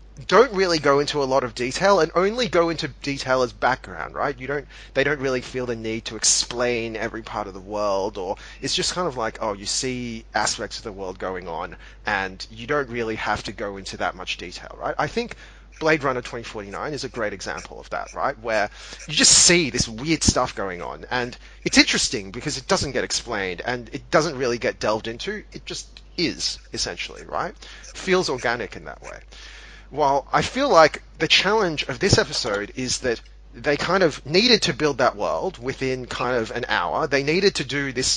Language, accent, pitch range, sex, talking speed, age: English, Australian, 120-170 Hz, male, 210 wpm, 30-49